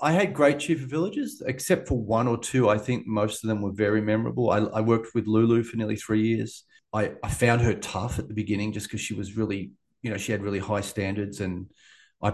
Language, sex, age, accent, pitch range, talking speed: English, male, 30-49, Australian, 100-125 Hz, 245 wpm